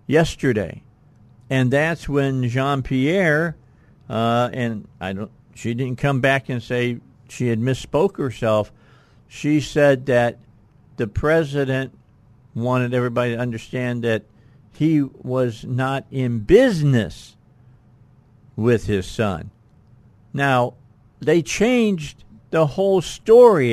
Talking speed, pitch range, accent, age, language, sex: 110 wpm, 115-145 Hz, American, 50-69, English, male